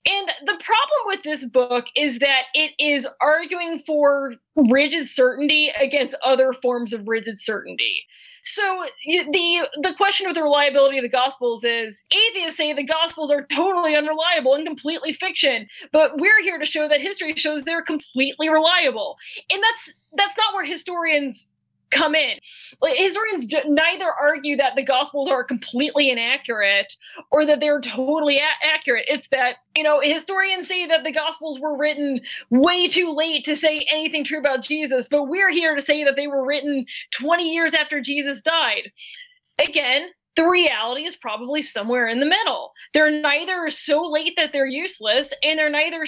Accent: American